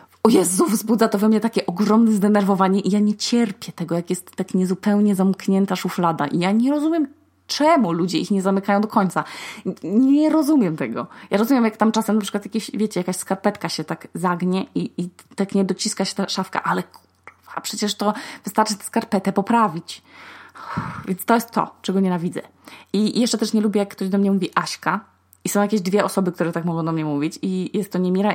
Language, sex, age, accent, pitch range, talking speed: Polish, female, 20-39, native, 180-220 Hz, 205 wpm